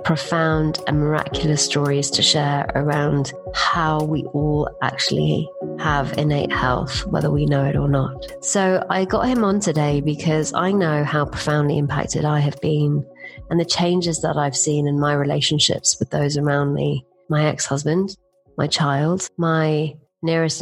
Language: English